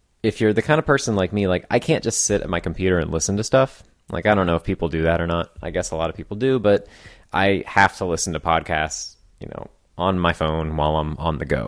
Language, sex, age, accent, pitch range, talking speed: English, male, 20-39, American, 85-110 Hz, 275 wpm